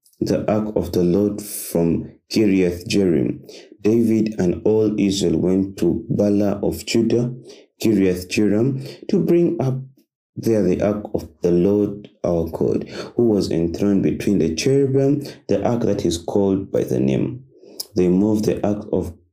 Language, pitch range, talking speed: English, 95-115 Hz, 145 wpm